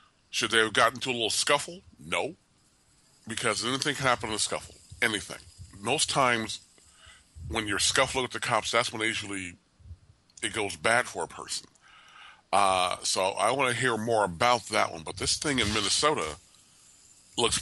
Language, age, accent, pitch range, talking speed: English, 40-59, American, 95-120 Hz, 170 wpm